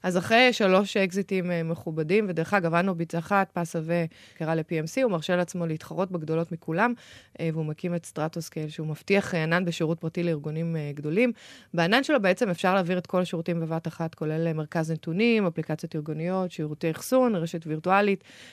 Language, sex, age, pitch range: Hebrew, female, 20-39, 160-210 Hz